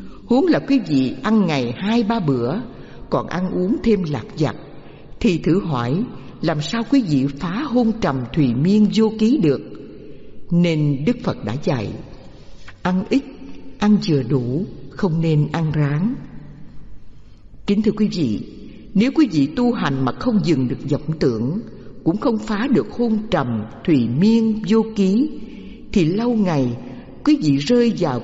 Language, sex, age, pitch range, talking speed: Vietnamese, female, 60-79, 135-220 Hz, 160 wpm